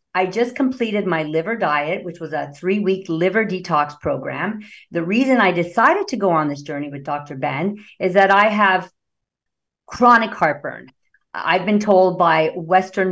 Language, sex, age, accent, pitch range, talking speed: English, female, 50-69, American, 160-220 Hz, 165 wpm